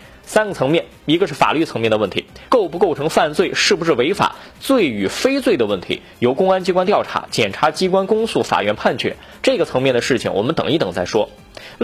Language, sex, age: Chinese, male, 20-39